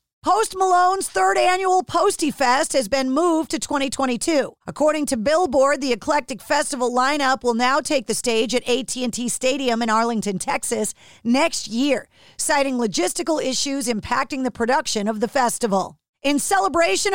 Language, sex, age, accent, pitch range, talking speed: English, female, 40-59, American, 240-310 Hz, 145 wpm